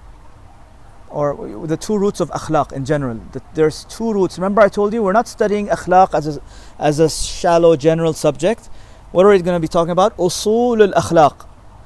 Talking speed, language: 180 wpm, English